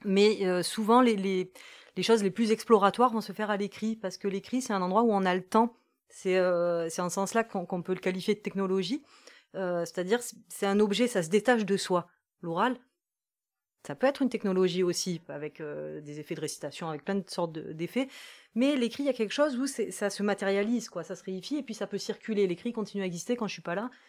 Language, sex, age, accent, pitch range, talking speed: French, female, 30-49, French, 185-230 Hz, 245 wpm